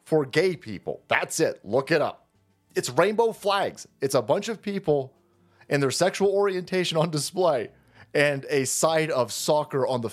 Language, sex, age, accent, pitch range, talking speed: English, male, 30-49, American, 130-190 Hz, 170 wpm